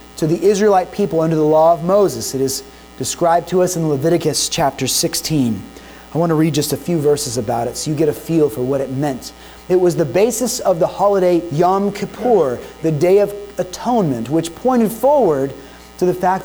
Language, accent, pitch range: English, American, 140-205 Hz